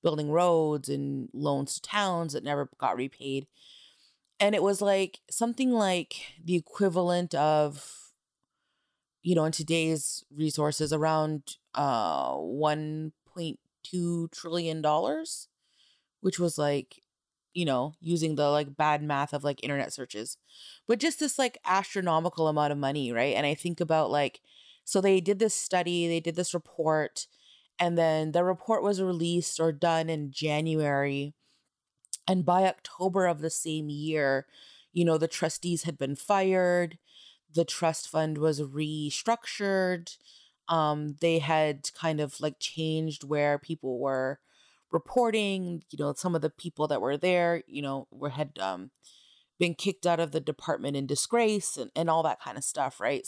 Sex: female